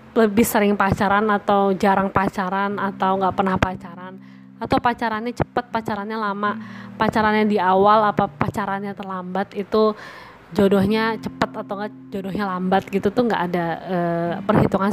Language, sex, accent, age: Indonesian, female, native, 20-39